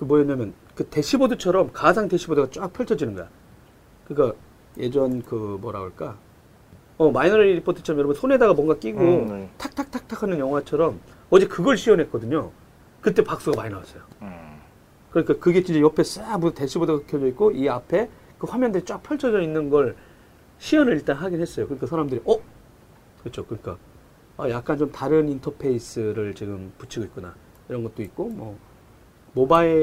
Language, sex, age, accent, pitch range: Korean, male, 40-59, native, 115-170 Hz